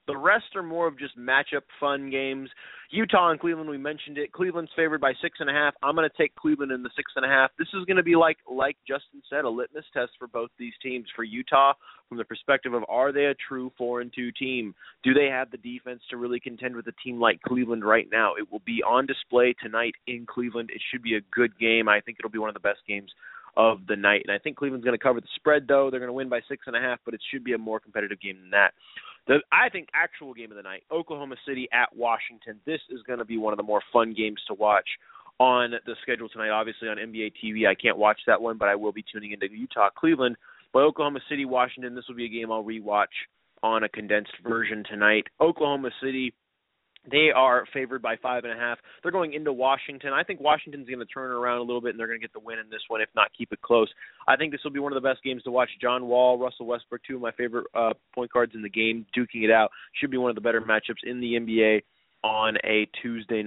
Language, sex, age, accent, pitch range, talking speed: English, male, 30-49, American, 115-135 Hz, 255 wpm